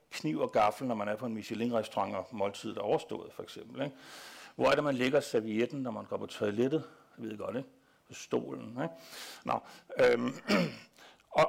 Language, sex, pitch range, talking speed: Danish, male, 130-180 Hz, 195 wpm